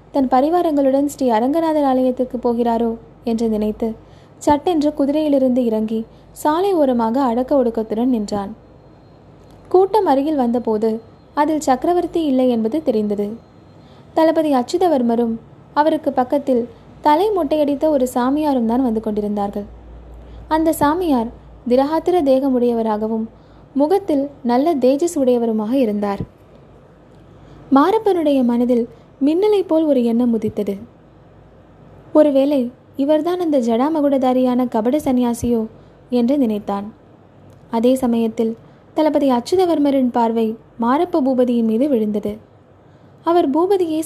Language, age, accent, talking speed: Tamil, 20-39, native, 95 wpm